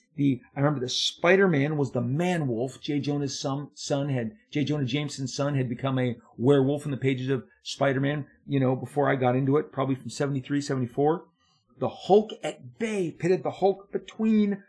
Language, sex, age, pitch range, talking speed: English, male, 40-59, 135-180 Hz, 180 wpm